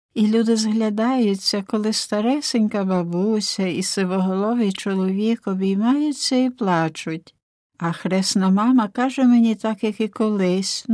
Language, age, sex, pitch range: Ukrainian, 60-79, female, 180-225 Hz